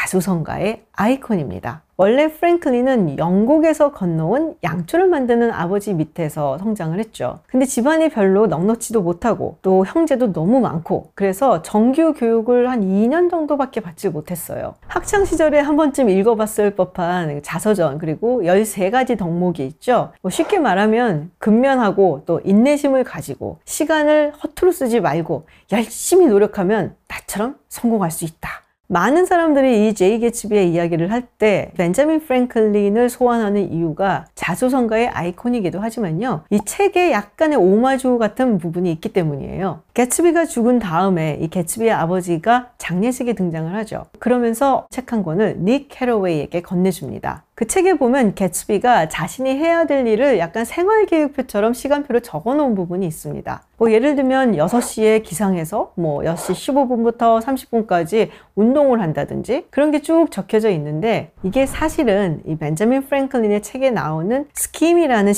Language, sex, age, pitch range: Korean, female, 40-59, 180-260 Hz